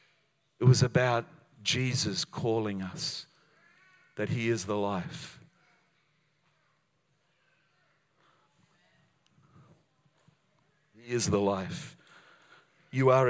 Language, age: English, 50-69